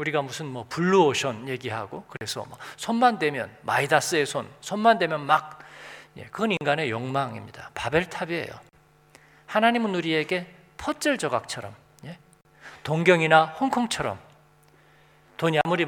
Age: 40-59